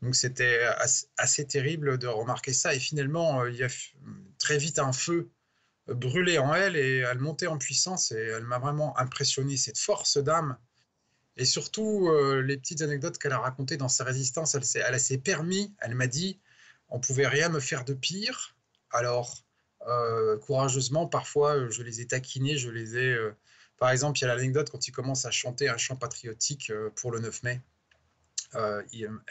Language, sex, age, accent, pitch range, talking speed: French, male, 20-39, French, 120-145 Hz, 190 wpm